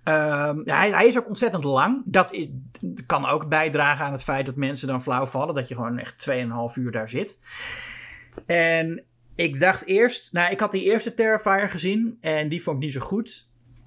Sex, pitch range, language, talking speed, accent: male, 125-160 Hz, Dutch, 200 wpm, Dutch